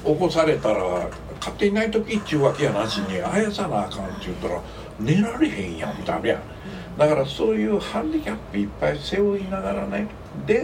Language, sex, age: Japanese, male, 60-79